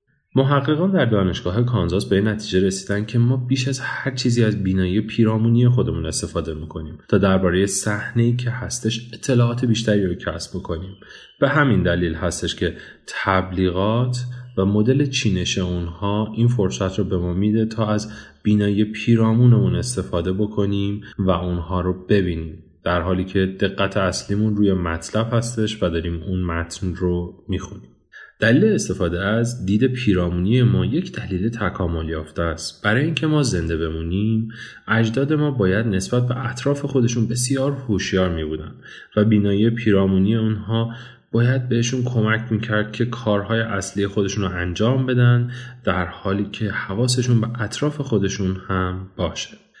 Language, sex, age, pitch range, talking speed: Persian, male, 30-49, 95-115 Hz, 140 wpm